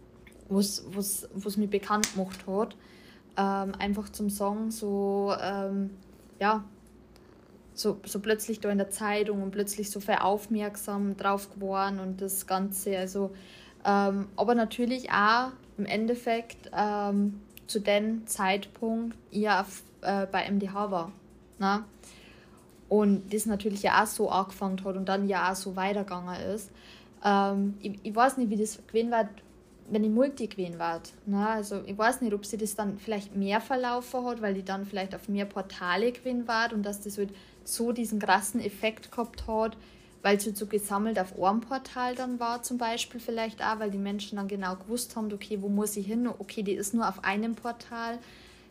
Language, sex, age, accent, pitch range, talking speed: German, female, 20-39, German, 195-225 Hz, 170 wpm